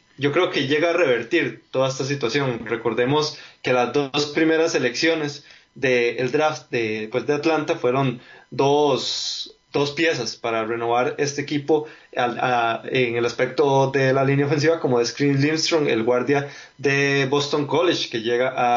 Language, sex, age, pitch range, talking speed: Spanish, male, 20-39, 125-155 Hz, 165 wpm